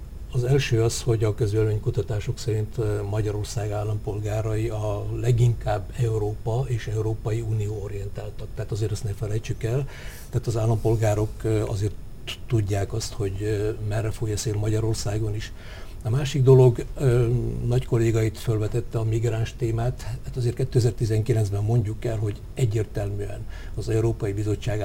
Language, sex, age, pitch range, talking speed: Hungarian, male, 60-79, 105-120 Hz, 130 wpm